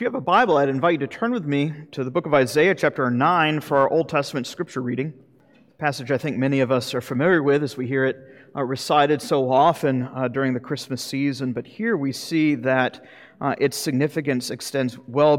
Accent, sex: American, male